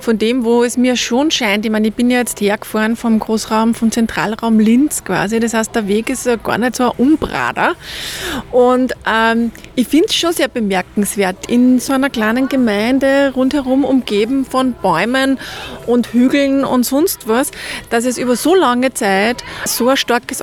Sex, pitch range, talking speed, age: female, 220-260 Hz, 180 wpm, 20-39